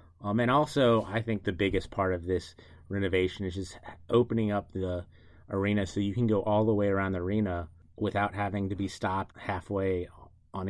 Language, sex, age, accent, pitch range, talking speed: English, male, 30-49, American, 90-100 Hz, 190 wpm